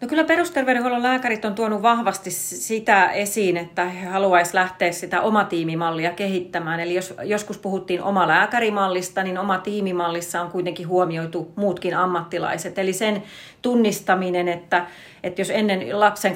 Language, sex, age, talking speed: Finnish, female, 30-49, 145 wpm